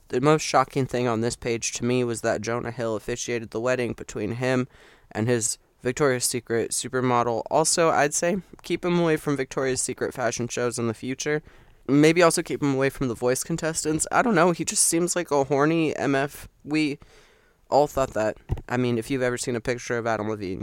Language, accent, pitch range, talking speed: English, American, 115-135 Hz, 205 wpm